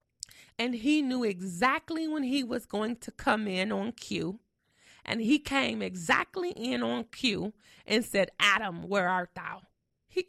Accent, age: American, 20-39